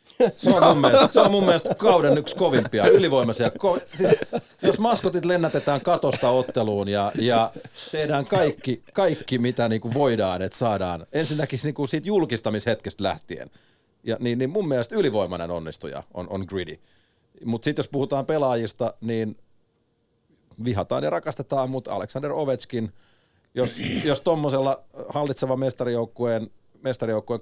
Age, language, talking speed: 30-49, Finnish, 140 wpm